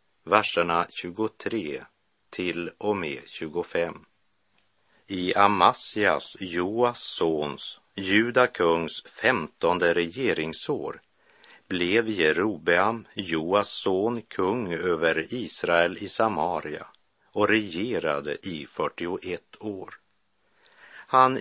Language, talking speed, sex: Swedish, 75 wpm, male